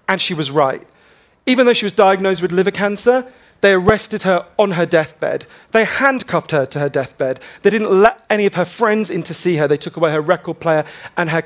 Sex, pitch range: male, 150-195 Hz